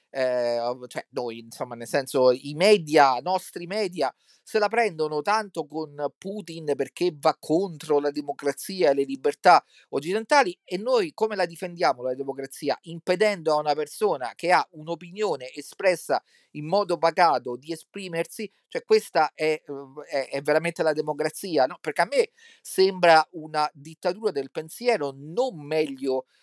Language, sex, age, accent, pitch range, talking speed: Italian, male, 40-59, native, 140-195 Hz, 150 wpm